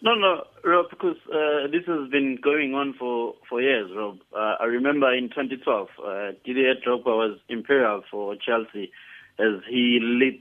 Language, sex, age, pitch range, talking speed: English, male, 20-39, 105-125 Hz, 165 wpm